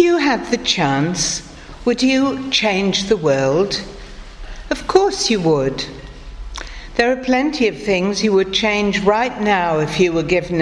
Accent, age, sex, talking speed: British, 60-79, female, 160 wpm